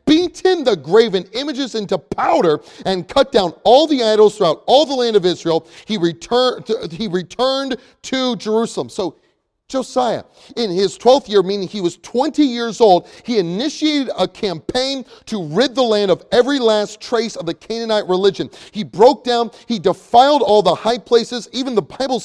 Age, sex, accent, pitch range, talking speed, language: 30-49, male, American, 200-255 Hz, 175 wpm, English